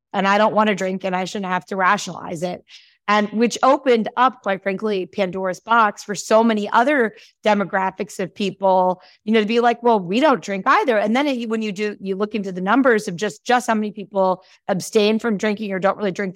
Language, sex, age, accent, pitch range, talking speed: English, female, 30-49, American, 185-220 Hz, 225 wpm